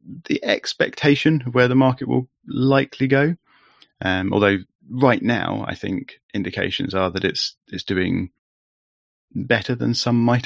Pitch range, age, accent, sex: 95-120 Hz, 30-49, British, male